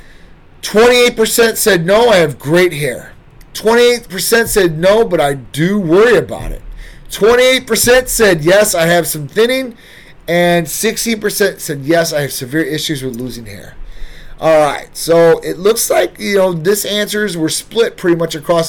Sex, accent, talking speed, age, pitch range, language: male, American, 160 wpm, 30-49, 140-185 Hz, English